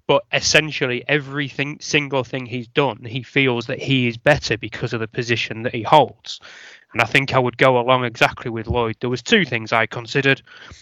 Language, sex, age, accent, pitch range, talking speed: English, male, 20-39, British, 120-135 Hz, 200 wpm